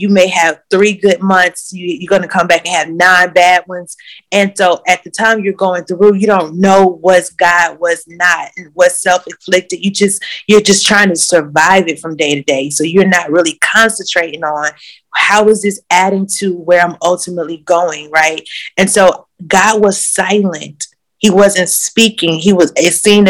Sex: female